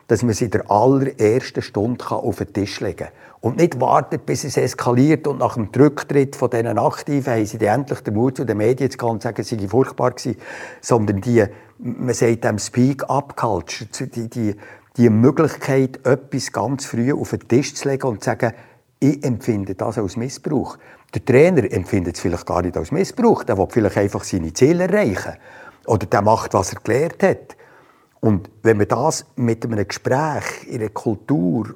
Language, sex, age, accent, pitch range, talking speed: German, male, 50-69, Austrian, 110-135 Hz, 195 wpm